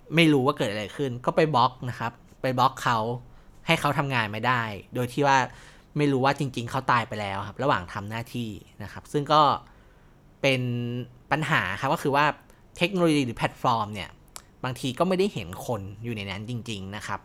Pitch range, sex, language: 110-145 Hz, male, Thai